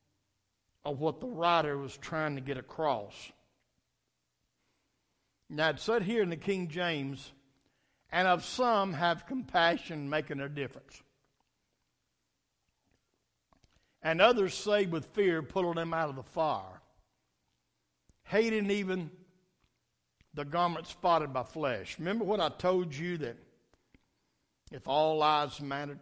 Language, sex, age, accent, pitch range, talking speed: English, male, 60-79, American, 135-185 Hz, 120 wpm